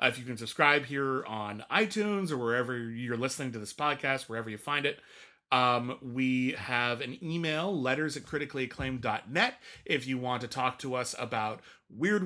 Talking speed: 170 wpm